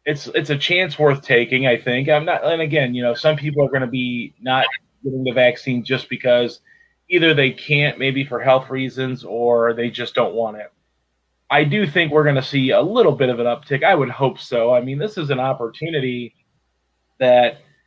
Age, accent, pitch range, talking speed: 30-49, American, 125-145 Hz, 210 wpm